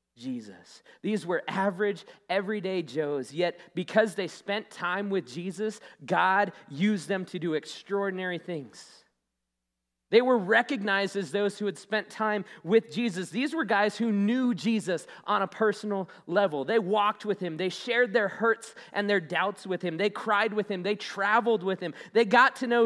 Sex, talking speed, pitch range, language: male, 175 wpm, 180-250 Hz, English